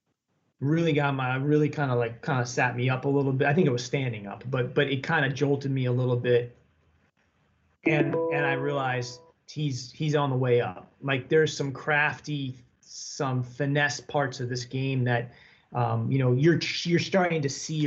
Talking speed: 200 wpm